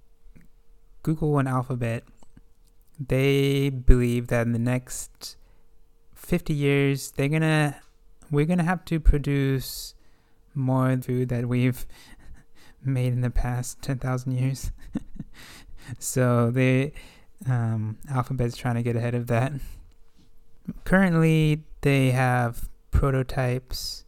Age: 20-39